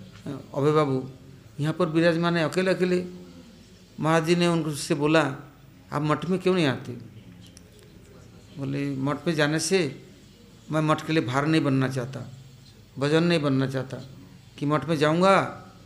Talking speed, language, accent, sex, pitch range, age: 150 wpm, English, Indian, male, 135-175 Hz, 60-79